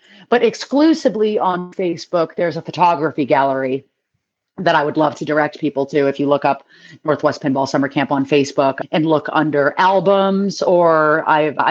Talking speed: 165 wpm